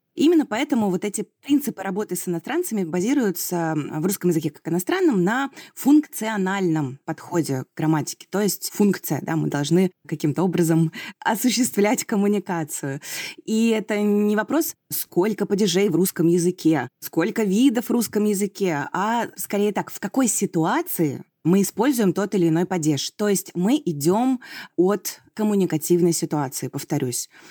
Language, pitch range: Russian, 165-215 Hz